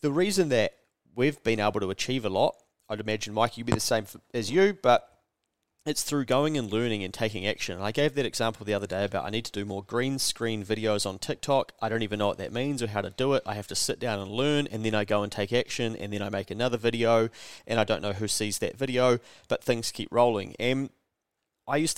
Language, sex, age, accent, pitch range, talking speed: English, male, 30-49, Australian, 105-130 Hz, 255 wpm